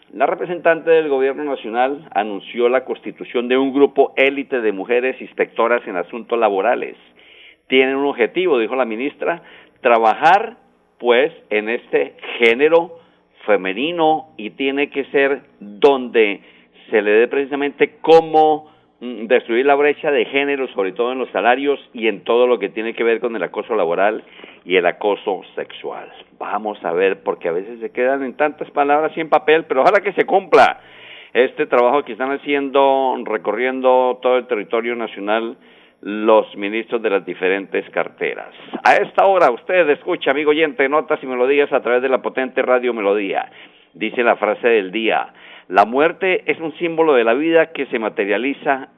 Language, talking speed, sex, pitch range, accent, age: Spanish, 165 wpm, male, 120-155 Hz, Mexican, 50-69